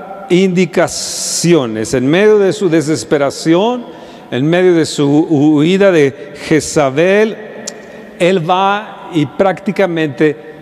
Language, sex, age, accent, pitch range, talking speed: Spanish, male, 50-69, Mexican, 150-195 Hz, 95 wpm